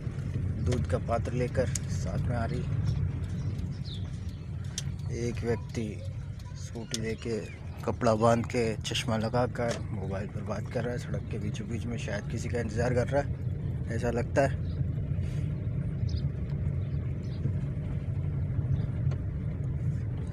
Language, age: Hindi, 20-39